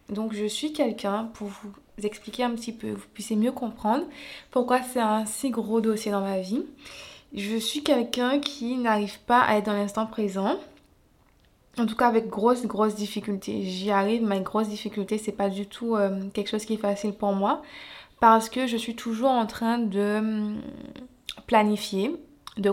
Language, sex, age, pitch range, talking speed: French, female, 20-39, 205-235 Hz, 175 wpm